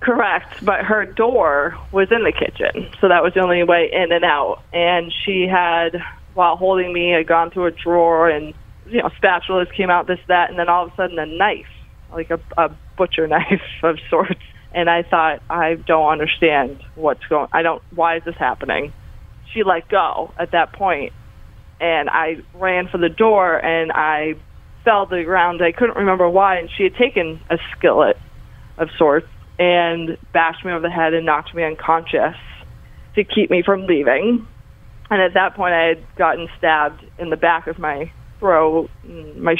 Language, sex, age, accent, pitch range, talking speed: English, female, 20-39, American, 160-185 Hz, 190 wpm